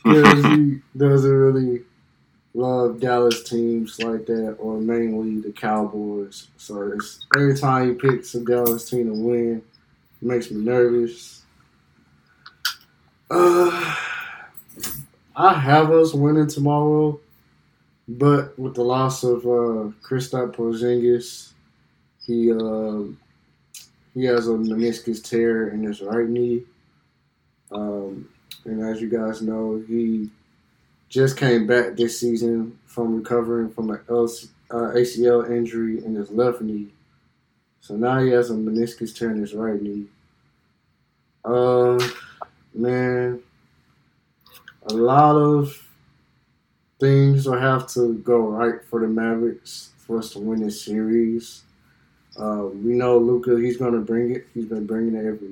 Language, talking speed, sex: English, 130 wpm, male